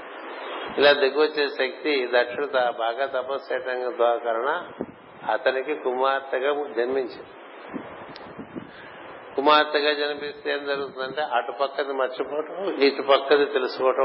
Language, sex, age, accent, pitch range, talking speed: Telugu, male, 50-69, native, 120-140 Hz, 75 wpm